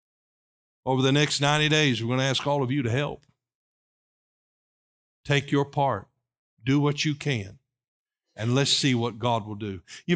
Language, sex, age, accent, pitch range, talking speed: English, male, 50-69, American, 125-180 Hz, 170 wpm